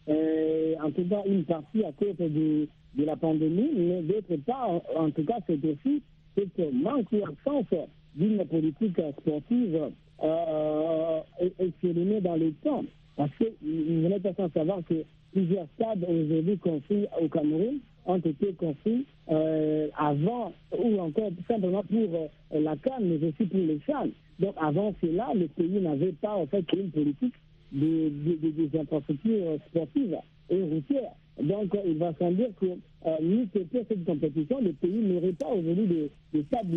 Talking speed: 165 wpm